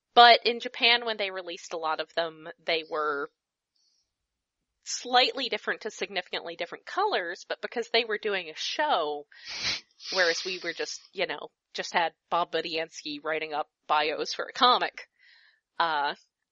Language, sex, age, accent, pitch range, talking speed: English, female, 20-39, American, 175-275 Hz, 155 wpm